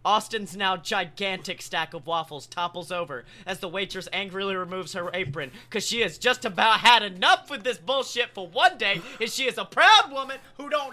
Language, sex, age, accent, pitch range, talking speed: English, male, 30-49, American, 130-190 Hz, 200 wpm